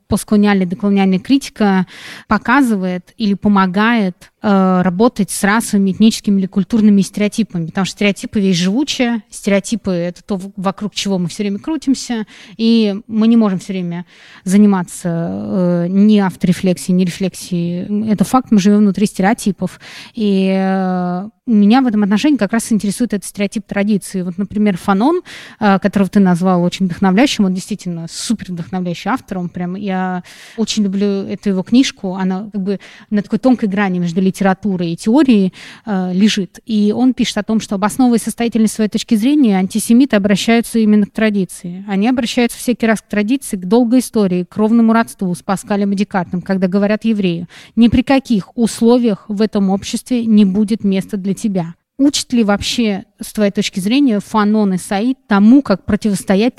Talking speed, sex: 160 wpm, female